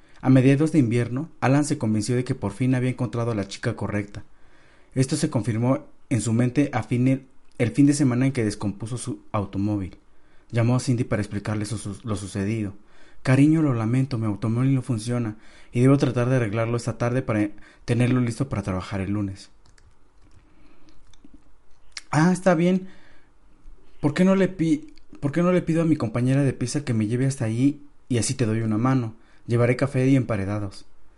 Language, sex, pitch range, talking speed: Spanish, male, 105-135 Hz, 185 wpm